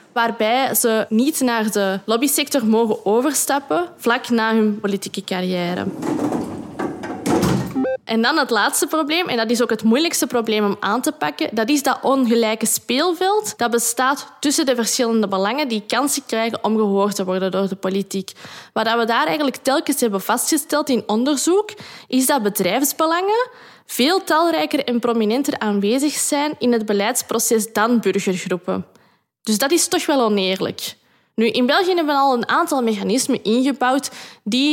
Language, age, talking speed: Dutch, 20-39, 155 wpm